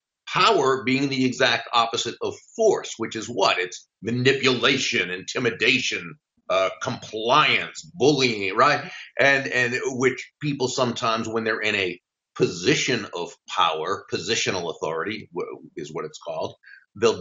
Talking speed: 125 wpm